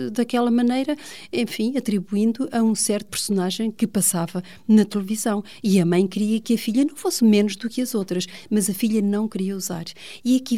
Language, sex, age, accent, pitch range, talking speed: Portuguese, female, 40-59, Brazilian, 180-230 Hz, 195 wpm